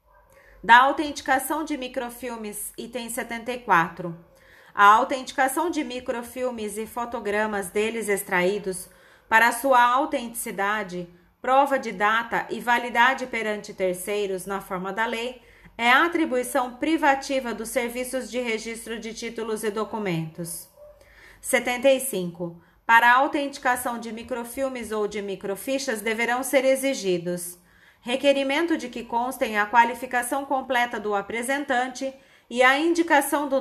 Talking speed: 115 wpm